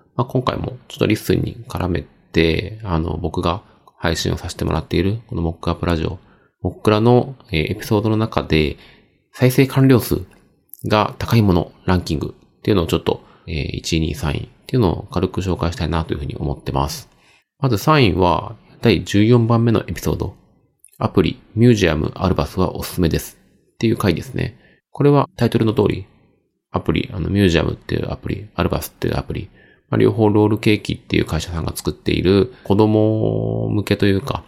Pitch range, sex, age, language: 85-115 Hz, male, 30-49, Japanese